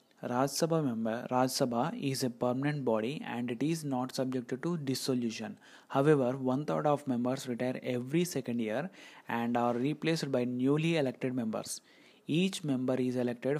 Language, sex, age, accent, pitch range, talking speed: English, male, 30-49, Indian, 125-145 Hz, 160 wpm